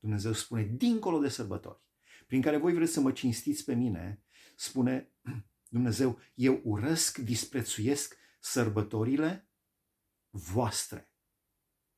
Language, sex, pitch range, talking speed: Romanian, male, 105-145 Hz, 105 wpm